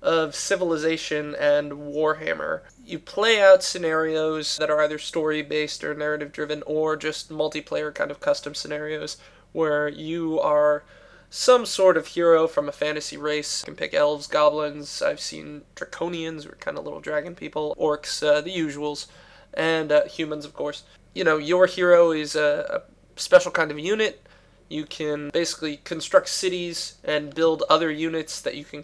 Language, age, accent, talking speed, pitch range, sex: English, 20-39, American, 160 wpm, 150-170 Hz, male